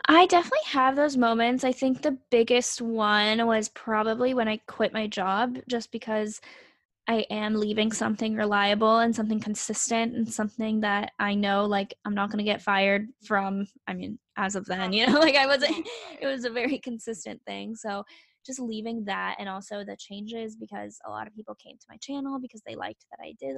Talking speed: 200 wpm